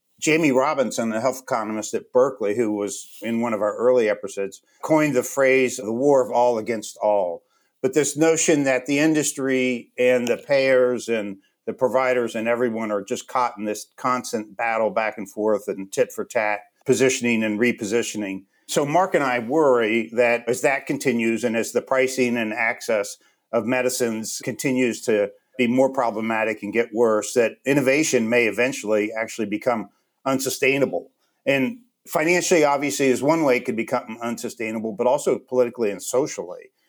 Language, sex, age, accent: English, male, 50-69, American